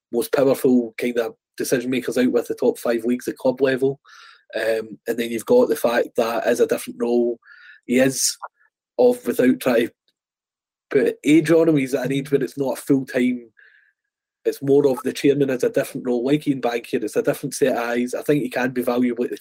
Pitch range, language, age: 120-150 Hz, English, 20-39